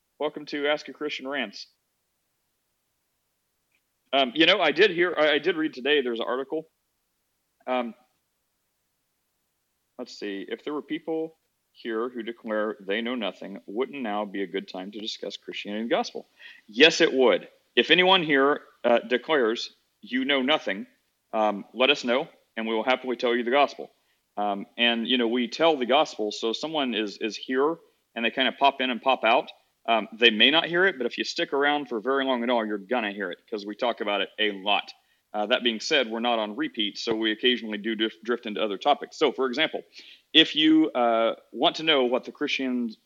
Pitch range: 110-140 Hz